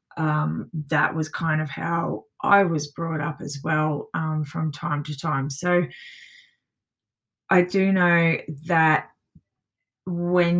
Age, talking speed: 20-39, 130 wpm